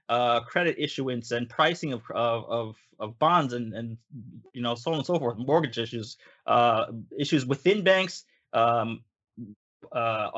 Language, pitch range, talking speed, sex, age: English, 120-145 Hz, 155 wpm, male, 20-39